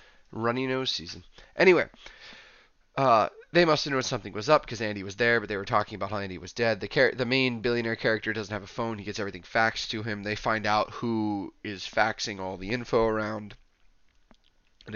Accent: American